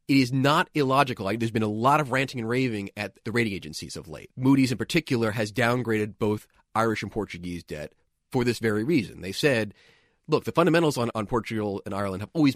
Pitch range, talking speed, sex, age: 105-135 Hz, 210 wpm, male, 30-49